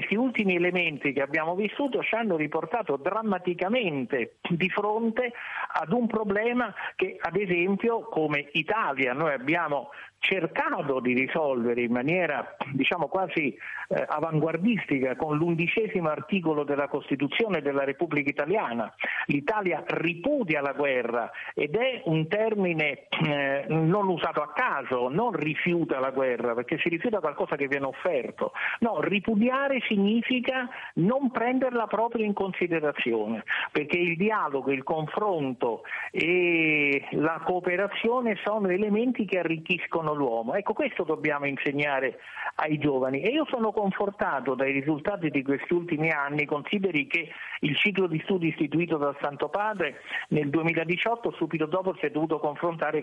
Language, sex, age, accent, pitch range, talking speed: Italian, male, 50-69, native, 145-205 Hz, 135 wpm